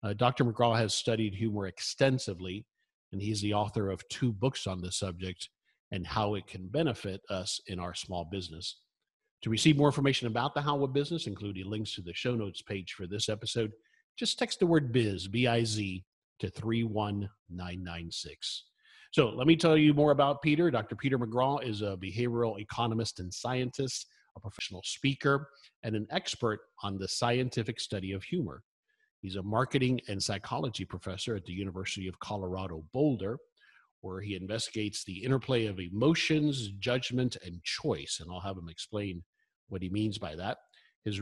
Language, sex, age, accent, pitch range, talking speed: English, male, 50-69, American, 95-125 Hz, 165 wpm